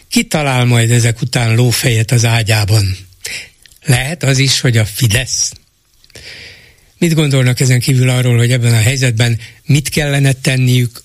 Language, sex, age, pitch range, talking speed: Hungarian, male, 60-79, 120-140 Hz, 140 wpm